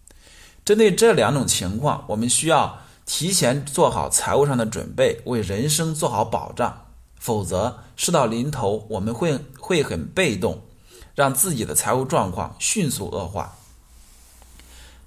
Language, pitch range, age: Chinese, 90-140 Hz, 20-39